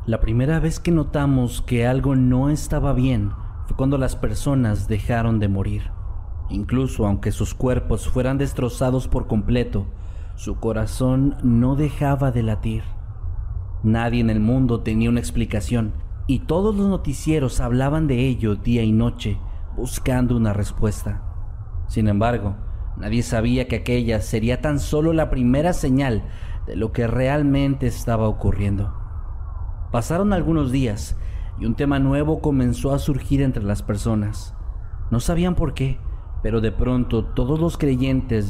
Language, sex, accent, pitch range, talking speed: Spanish, male, Mexican, 100-135 Hz, 145 wpm